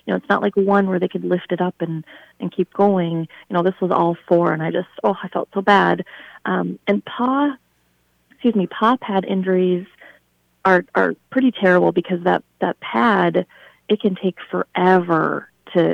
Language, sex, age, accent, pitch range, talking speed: English, female, 30-49, American, 170-195 Hz, 190 wpm